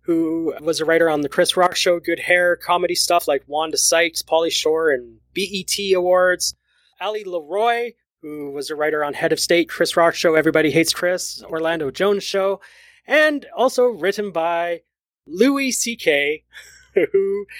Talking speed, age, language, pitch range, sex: 160 wpm, 30-49, English, 160-225 Hz, male